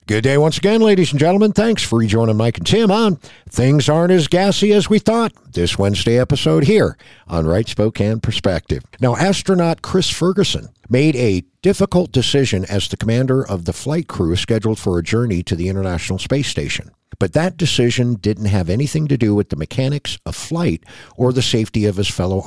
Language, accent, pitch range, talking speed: English, American, 95-145 Hz, 190 wpm